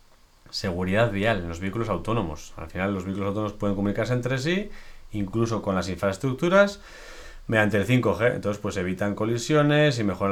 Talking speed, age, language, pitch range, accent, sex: 165 wpm, 30-49, Spanish, 95-115 Hz, Spanish, male